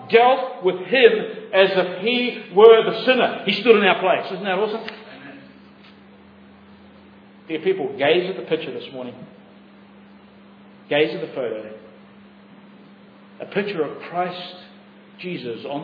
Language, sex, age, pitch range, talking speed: English, male, 50-69, 170-225 Hz, 135 wpm